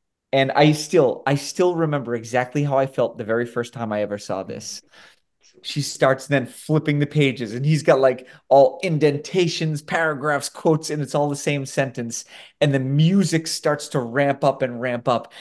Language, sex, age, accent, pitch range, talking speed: English, male, 30-49, American, 135-180 Hz, 185 wpm